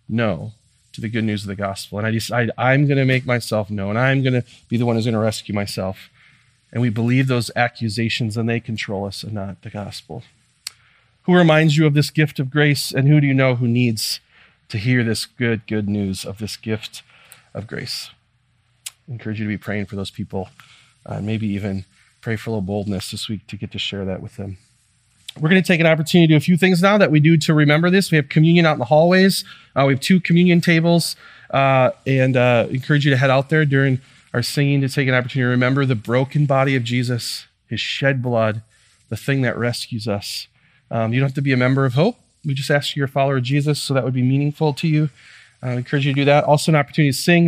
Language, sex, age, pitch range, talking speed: English, male, 30-49, 110-145 Hz, 240 wpm